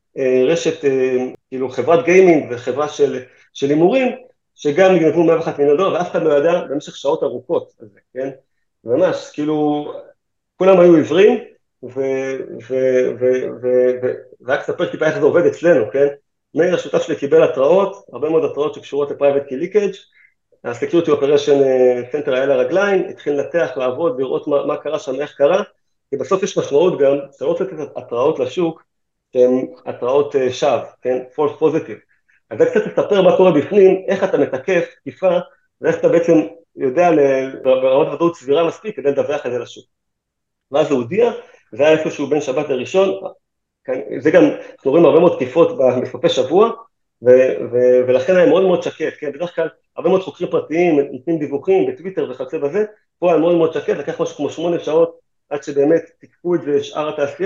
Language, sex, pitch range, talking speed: Hebrew, male, 140-210 Hz, 95 wpm